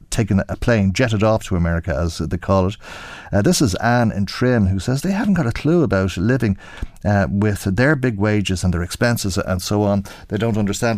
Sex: male